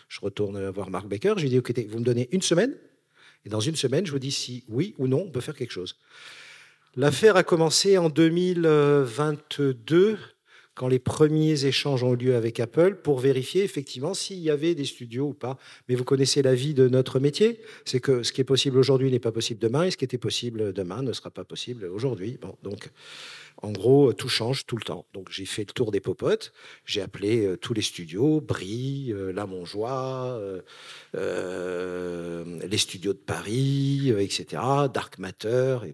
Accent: French